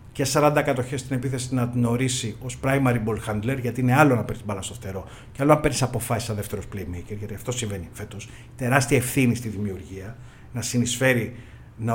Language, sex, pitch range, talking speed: Greek, male, 115-140 Hz, 190 wpm